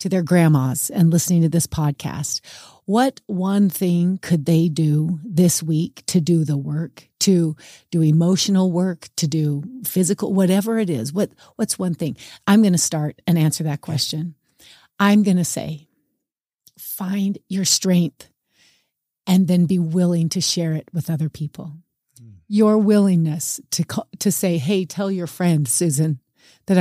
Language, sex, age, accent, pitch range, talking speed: English, female, 40-59, American, 165-215 Hz, 155 wpm